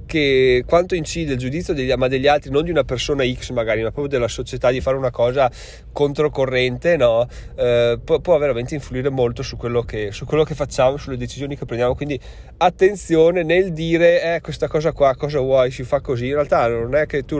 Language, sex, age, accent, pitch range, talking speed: Italian, male, 30-49, native, 125-155 Hz, 210 wpm